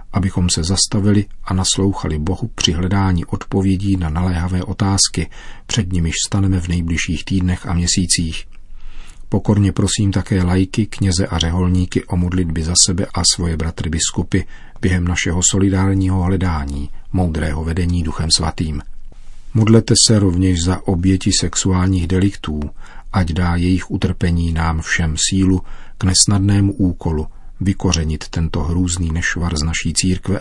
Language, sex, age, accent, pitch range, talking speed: Czech, male, 40-59, native, 85-95 Hz, 130 wpm